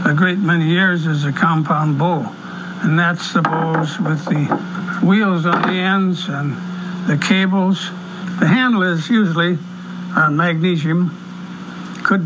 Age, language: 60-79, English